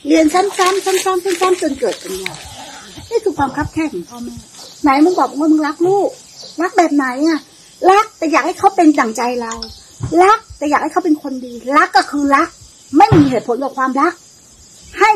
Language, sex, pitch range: Thai, female, 295-370 Hz